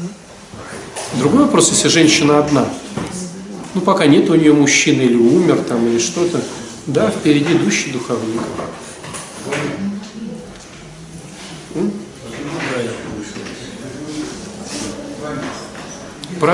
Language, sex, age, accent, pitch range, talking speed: Russian, male, 40-59, native, 145-185 Hz, 75 wpm